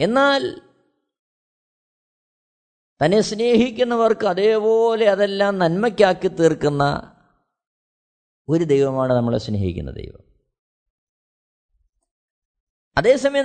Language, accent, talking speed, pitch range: Malayalam, native, 60 wpm, 175-235 Hz